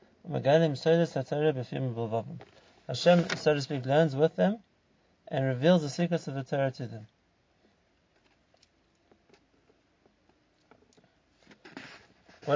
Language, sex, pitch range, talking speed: English, male, 125-155 Hz, 80 wpm